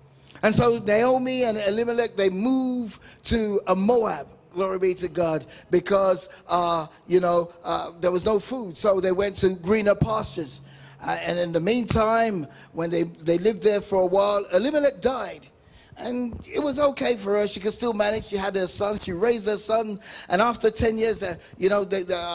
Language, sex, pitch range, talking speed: English, male, 175-220 Hz, 190 wpm